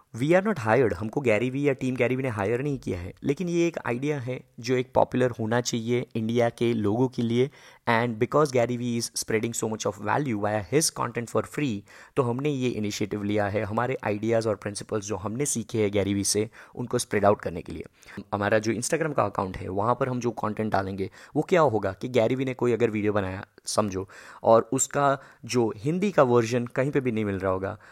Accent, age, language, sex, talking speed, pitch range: native, 20-39, Hindi, male, 220 wpm, 105-130 Hz